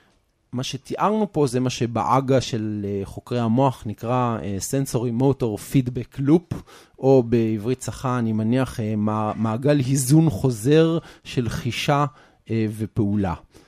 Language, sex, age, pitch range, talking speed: Hebrew, male, 30-49, 115-150 Hz, 125 wpm